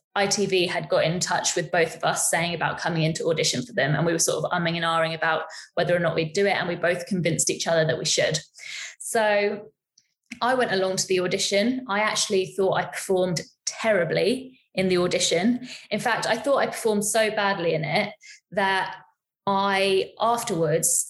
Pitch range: 180-215 Hz